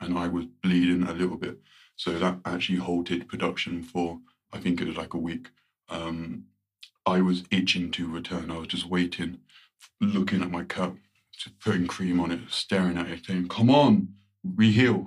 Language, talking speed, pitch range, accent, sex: English, 185 wpm, 85-90 Hz, British, male